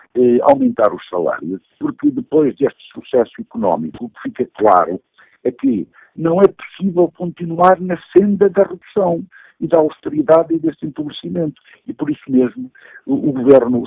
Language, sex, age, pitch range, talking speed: Portuguese, male, 60-79, 125-195 Hz, 155 wpm